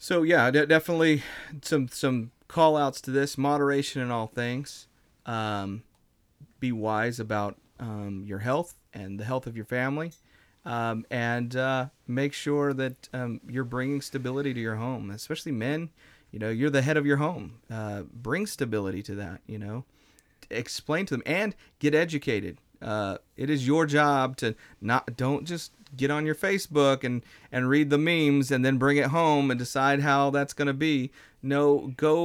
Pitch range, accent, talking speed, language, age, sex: 110-145 Hz, American, 175 wpm, English, 30-49, male